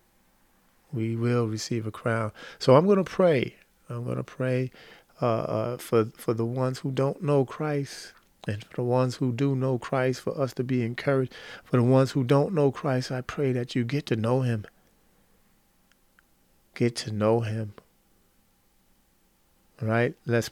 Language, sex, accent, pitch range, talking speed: English, male, American, 115-135 Hz, 175 wpm